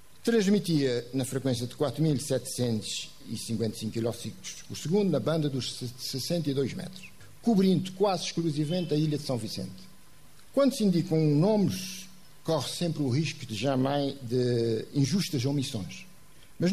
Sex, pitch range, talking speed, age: male, 120-165 Hz, 120 wpm, 50-69